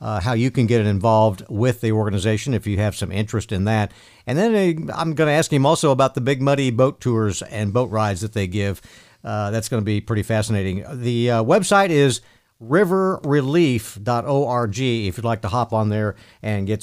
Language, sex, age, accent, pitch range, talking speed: English, male, 50-69, American, 115-145 Hz, 205 wpm